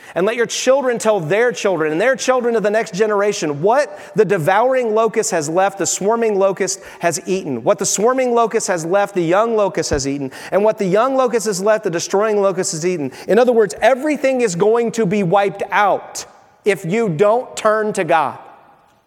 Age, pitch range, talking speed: 30-49, 170-230 Hz, 200 wpm